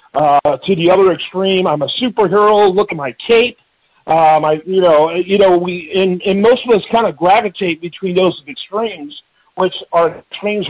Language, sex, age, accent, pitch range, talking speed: English, male, 50-69, American, 160-215 Hz, 185 wpm